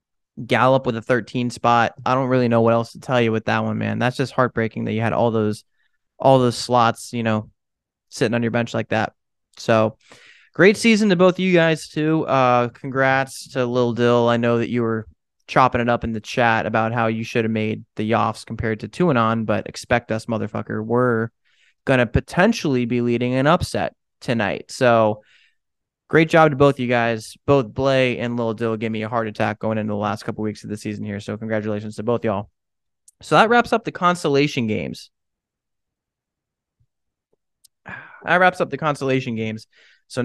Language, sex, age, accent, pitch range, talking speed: English, male, 20-39, American, 110-135 Hz, 200 wpm